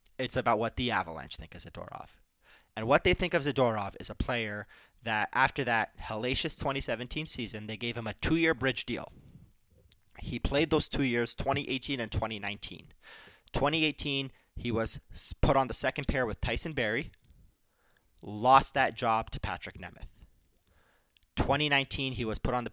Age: 30-49